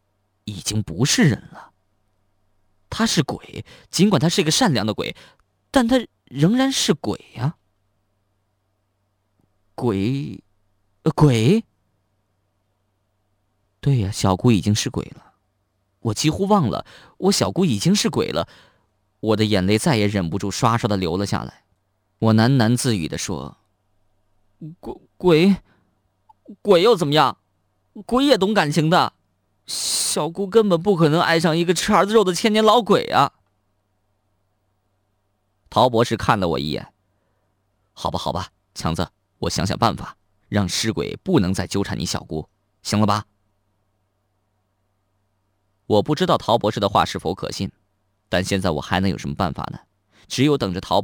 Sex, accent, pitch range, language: male, native, 100-140 Hz, Chinese